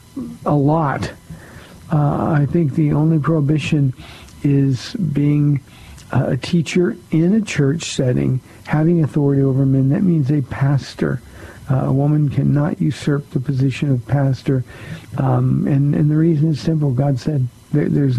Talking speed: 140 wpm